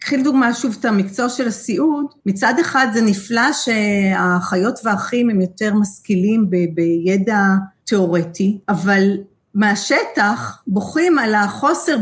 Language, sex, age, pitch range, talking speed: Hebrew, female, 40-59, 195-255 Hz, 120 wpm